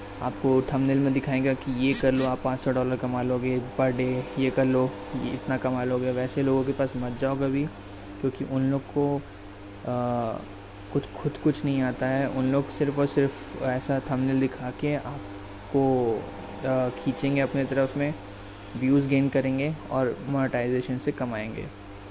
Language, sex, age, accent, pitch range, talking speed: Hindi, male, 20-39, native, 120-135 Hz, 165 wpm